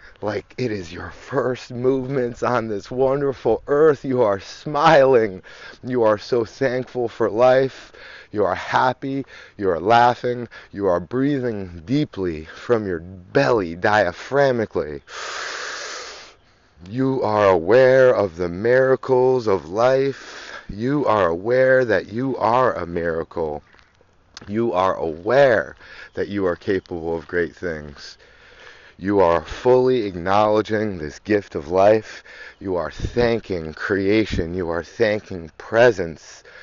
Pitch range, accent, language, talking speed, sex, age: 95-130 Hz, American, English, 125 wpm, male, 30-49